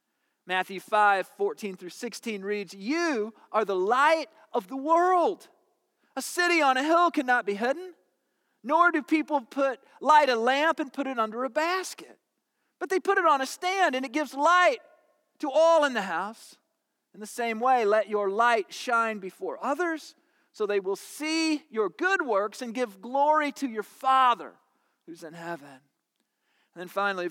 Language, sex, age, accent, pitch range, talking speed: English, male, 40-59, American, 195-295 Hz, 175 wpm